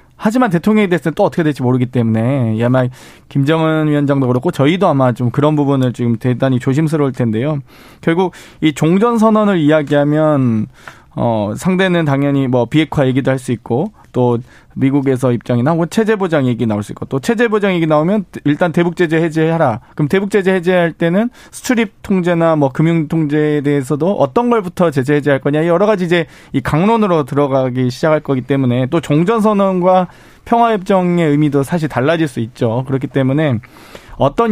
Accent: native